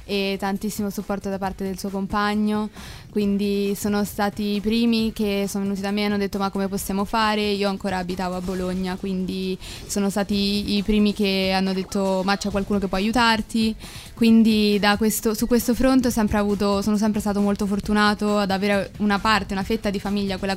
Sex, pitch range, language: female, 200-220 Hz, Italian